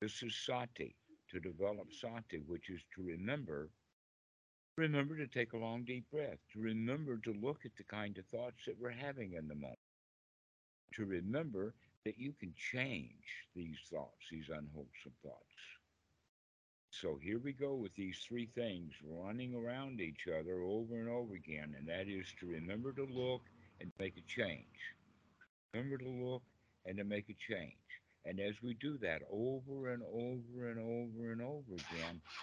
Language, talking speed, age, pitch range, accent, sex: English, 170 wpm, 60-79, 90-120 Hz, American, male